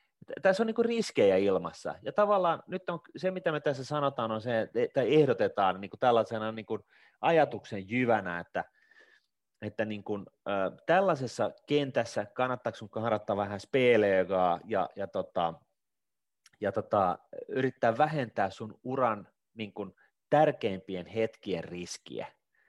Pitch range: 100-130 Hz